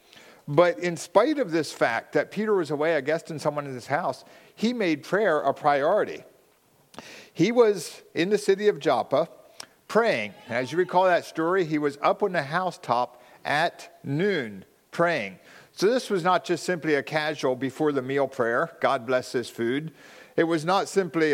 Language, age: English, 50-69